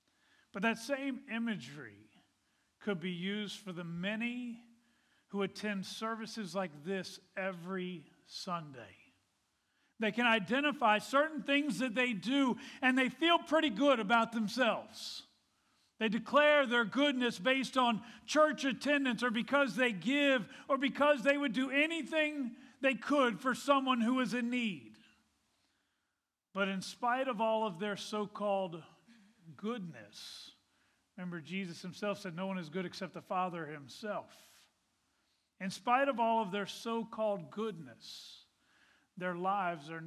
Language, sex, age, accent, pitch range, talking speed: English, male, 50-69, American, 175-250 Hz, 135 wpm